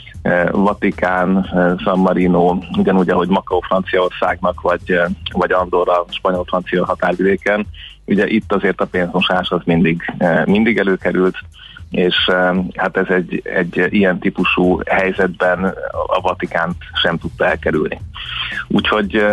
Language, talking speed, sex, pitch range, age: Hungarian, 115 wpm, male, 90-105 Hz, 30-49